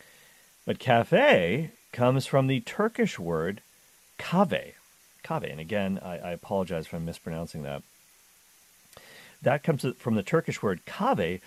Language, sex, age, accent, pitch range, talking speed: English, male, 50-69, American, 90-130 Hz, 120 wpm